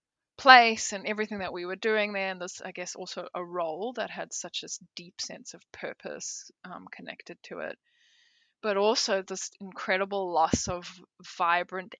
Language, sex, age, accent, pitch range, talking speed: English, female, 20-39, Australian, 185-225 Hz, 170 wpm